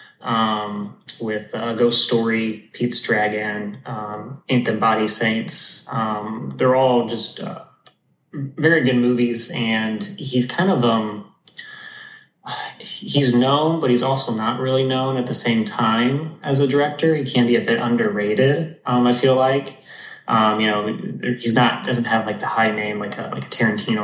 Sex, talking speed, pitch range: male, 160 wpm, 110-130 Hz